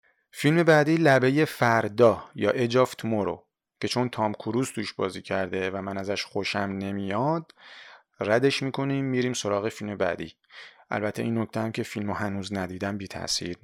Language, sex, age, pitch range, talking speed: Persian, male, 30-49, 105-125 Hz, 150 wpm